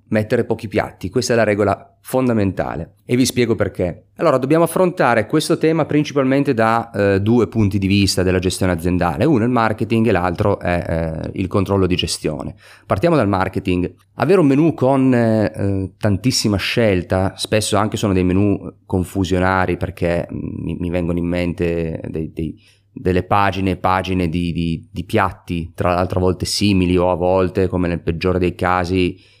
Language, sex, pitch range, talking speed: Italian, male, 90-110 Hz, 165 wpm